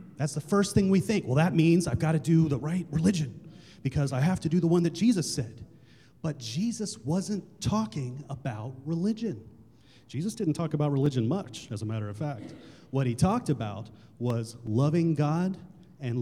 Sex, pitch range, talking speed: male, 130-180 Hz, 190 wpm